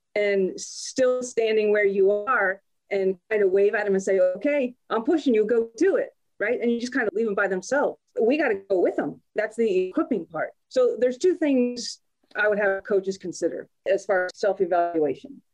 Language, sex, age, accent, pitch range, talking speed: English, female, 30-49, American, 190-250 Hz, 210 wpm